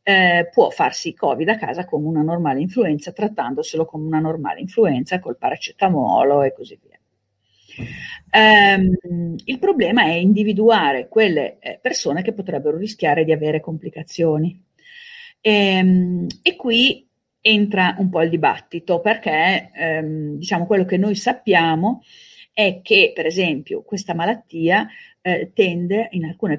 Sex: female